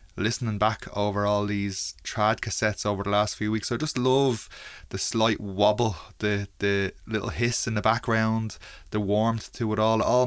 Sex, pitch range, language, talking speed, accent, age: male, 100-115 Hz, English, 185 wpm, Irish, 20-39